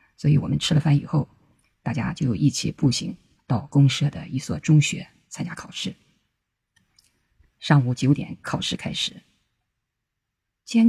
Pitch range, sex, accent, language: 140-160 Hz, female, native, Chinese